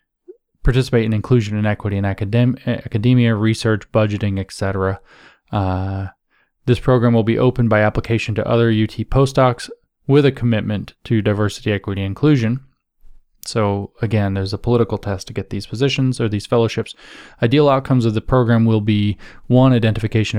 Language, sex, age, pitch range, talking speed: English, male, 20-39, 105-130 Hz, 155 wpm